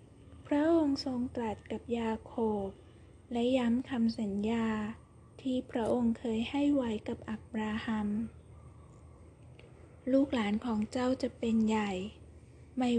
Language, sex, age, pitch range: Thai, female, 20-39, 215-255 Hz